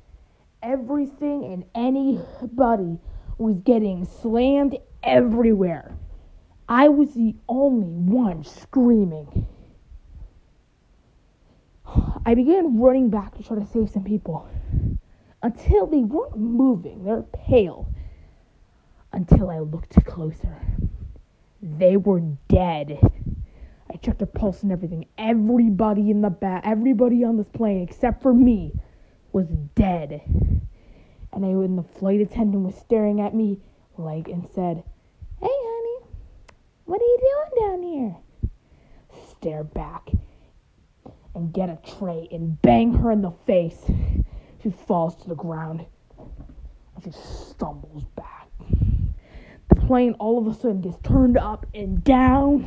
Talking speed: 125 wpm